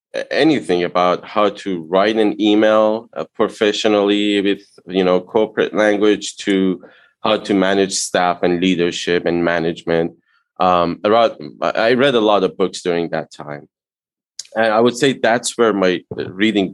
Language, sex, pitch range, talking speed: English, male, 90-105 Hz, 145 wpm